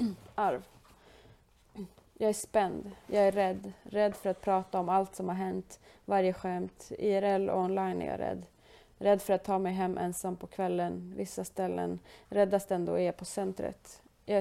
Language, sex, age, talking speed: Swedish, female, 30-49, 170 wpm